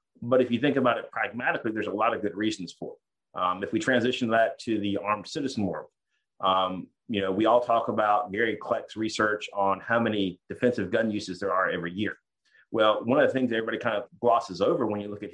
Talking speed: 235 wpm